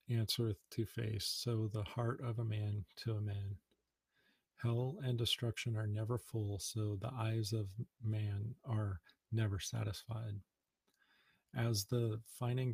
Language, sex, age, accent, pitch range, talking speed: English, male, 40-59, American, 105-115 Hz, 135 wpm